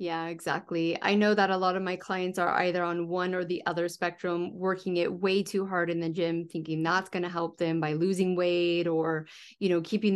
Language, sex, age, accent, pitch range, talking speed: English, female, 30-49, American, 170-195 Hz, 230 wpm